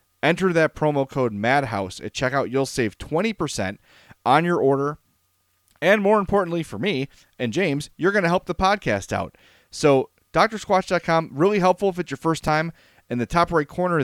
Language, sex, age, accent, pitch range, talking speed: English, male, 30-49, American, 110-155 Hz, 175 wpm